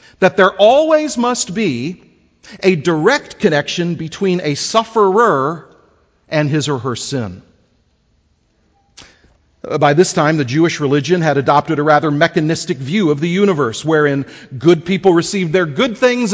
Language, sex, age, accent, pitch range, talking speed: English, male, 40-59, American, 150-215 Hz, 140 wpm